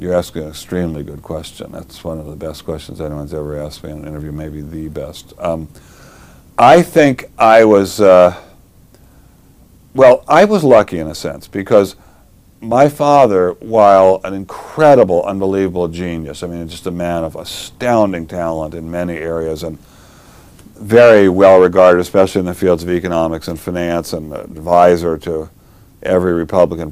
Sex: male